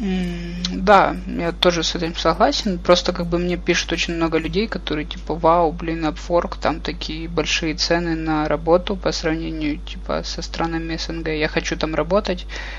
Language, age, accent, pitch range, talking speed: Russian, 20-39, native, 155-175 Hz, 170 wpm